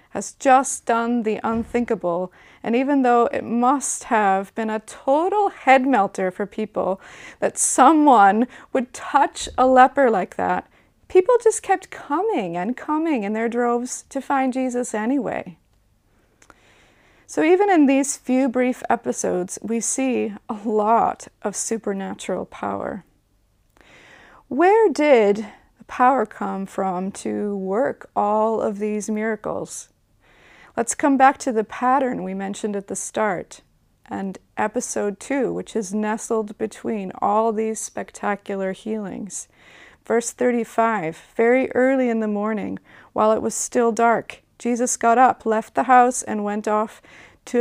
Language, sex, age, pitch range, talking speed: English, female, 30-49, 205-255 Hz, 135 wpm